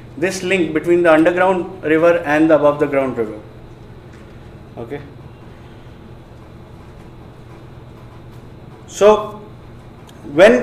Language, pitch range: Hindi, 115-180 Hz